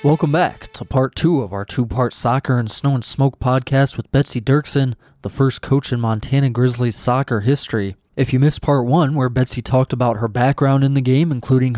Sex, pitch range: male, 120-140 Hz